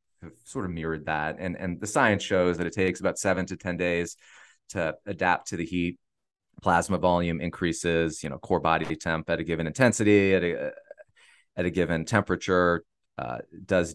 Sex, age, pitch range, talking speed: male, 30-49, 80-95 Hz, 185 wpm